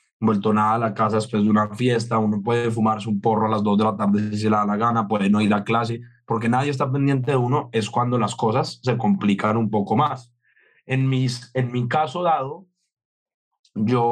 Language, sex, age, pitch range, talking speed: Spanish, male, 20-39, 105-125 Hz, 225 wpm